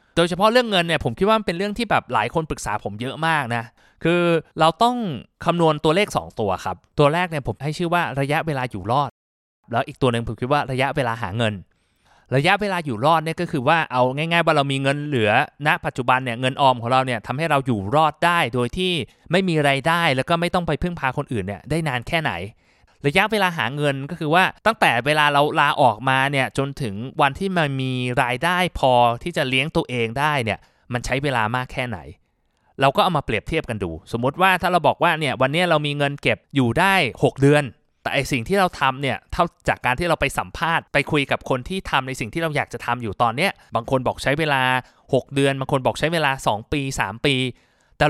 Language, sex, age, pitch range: Thai, male, 20-39, 125-165 Hz